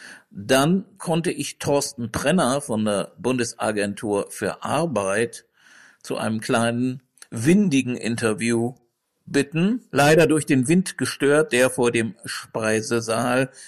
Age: 60-79